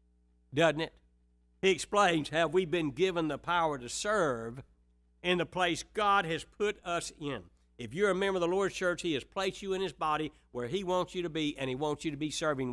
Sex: male